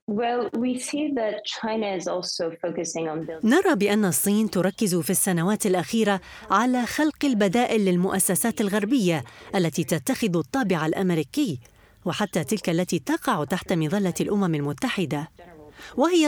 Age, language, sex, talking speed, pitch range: 30-49, Arabic, female, 90 wpm, 175-230 Hz